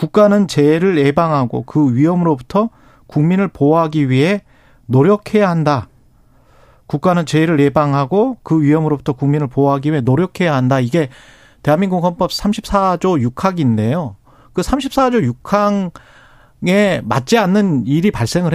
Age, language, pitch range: 40-59, Korean, 130-185 Hz